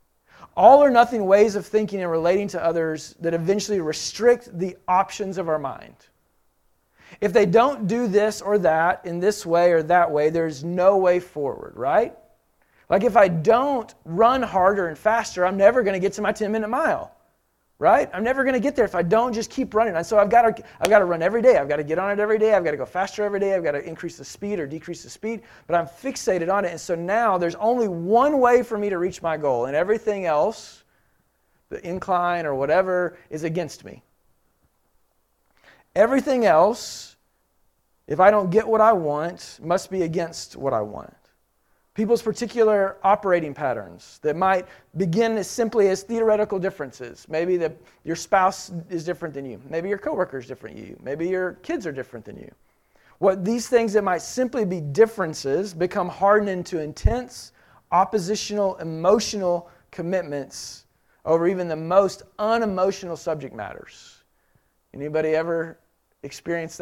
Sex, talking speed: male, 180 wpm